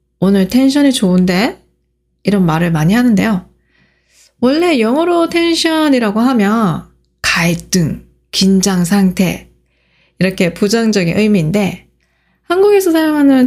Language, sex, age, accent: Korean, female, 20-39, native